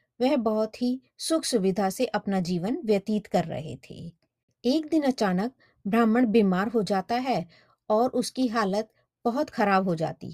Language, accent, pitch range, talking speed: Hindi, native, 190-255 Hz, 155 wpm